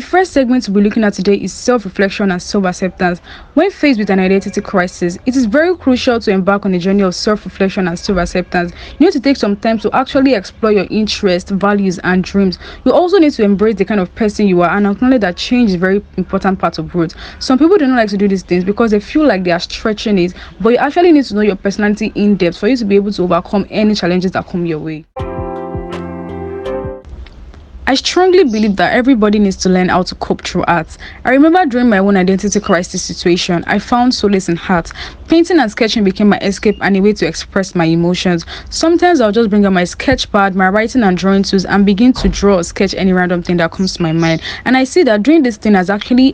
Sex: female